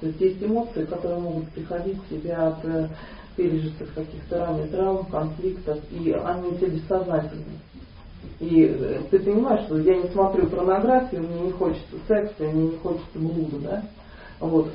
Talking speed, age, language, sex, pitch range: 165 wpm, 40-59, Russian, female, 155-185 Hz